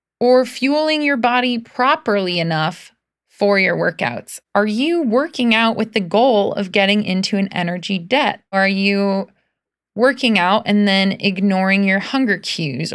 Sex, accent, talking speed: female, American, 150 wpm